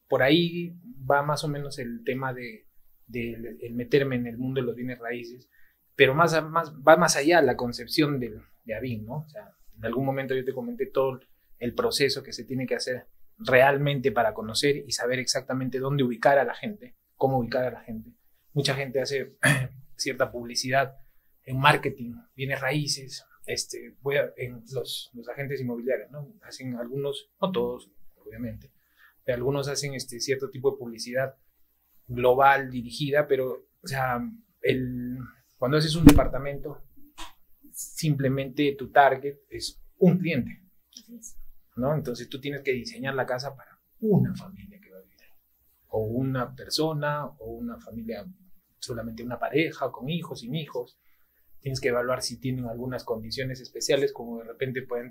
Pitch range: 120-145 Hz